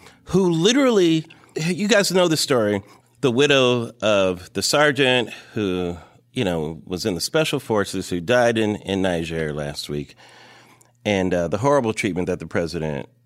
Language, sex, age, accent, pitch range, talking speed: English, male, 30-49, American, 95-145 Hz, 160 wpm